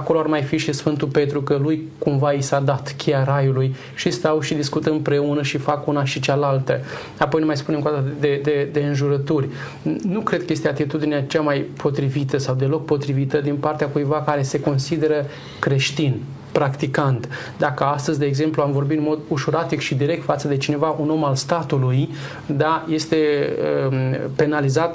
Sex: male